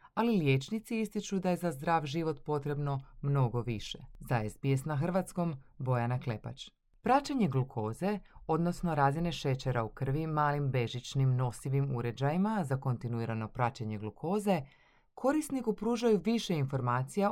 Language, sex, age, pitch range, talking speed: Croatian, female, 30-49, 130-180 Hz, 125 wpm